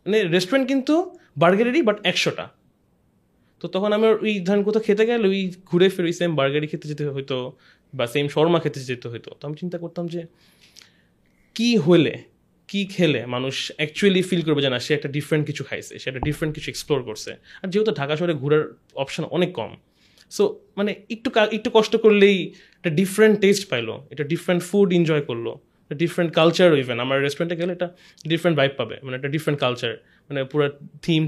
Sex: male